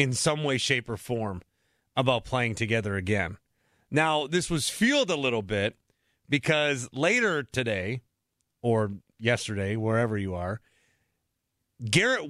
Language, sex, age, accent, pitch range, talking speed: English, male, 30-49, American, 115-155 Hz, 125 wpm